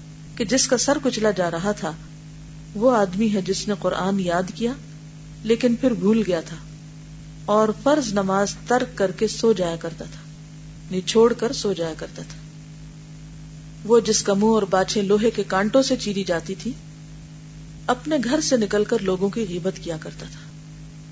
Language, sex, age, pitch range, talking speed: Urdu, female, 40-59, 155-215 Hz, 100 wpm